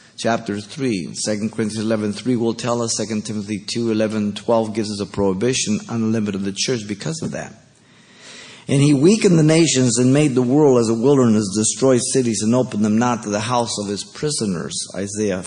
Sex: male